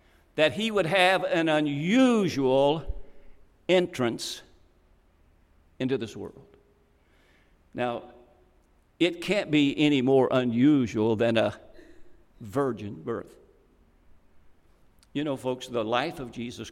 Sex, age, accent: male, 60-79, American